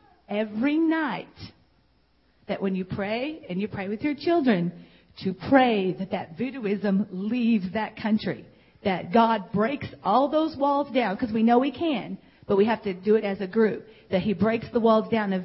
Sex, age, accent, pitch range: female, 40-59, American, 190-230 Hz